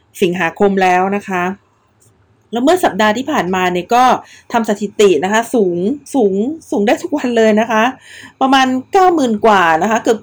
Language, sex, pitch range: Thai, female, 190-230 Hz